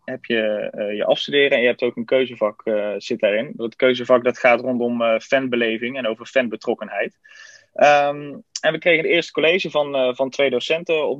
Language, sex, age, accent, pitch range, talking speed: Dutch, male, 20-39, Dutch, 130-155 Hz, 200 wpm